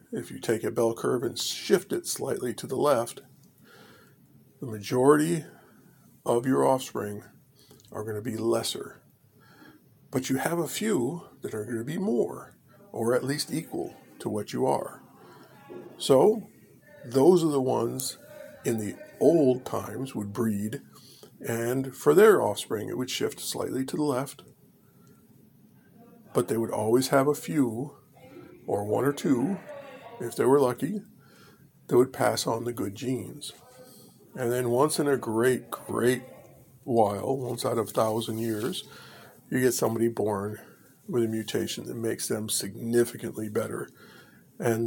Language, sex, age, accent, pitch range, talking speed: English, male, 50-69, American, 115-135 Hz, 150 wpm